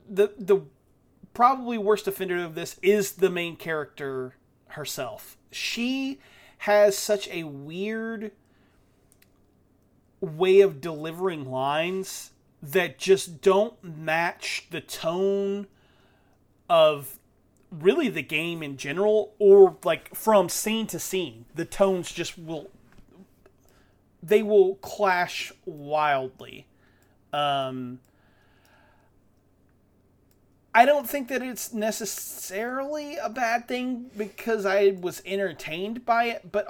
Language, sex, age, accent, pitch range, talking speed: English, male, 30-49, American, 140-210 Hz, 105 wpm